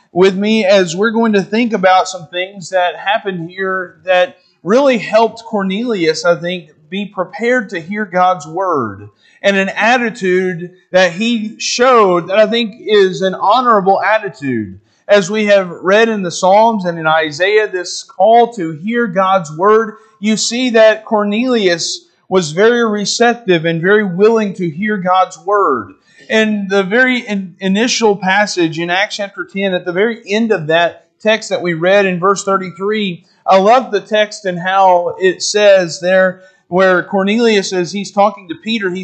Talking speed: 165 wpm